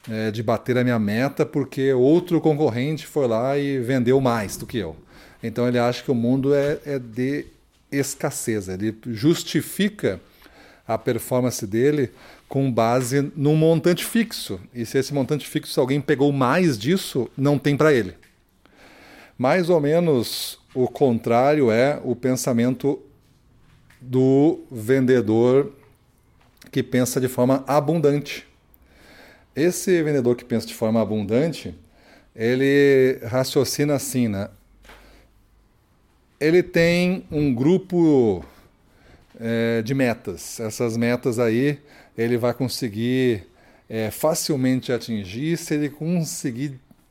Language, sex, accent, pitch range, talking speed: Portuguese, male, Brazilian, 120-150 Hz, 120 wpm